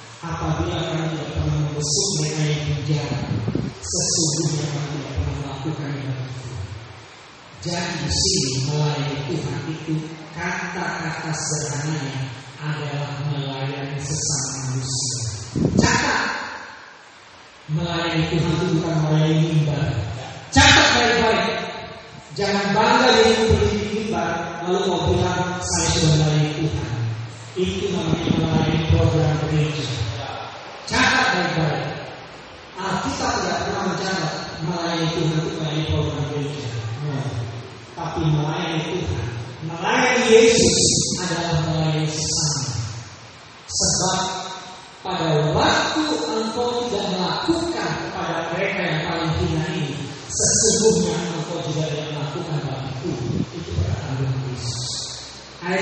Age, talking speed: 20-39, 80 wpm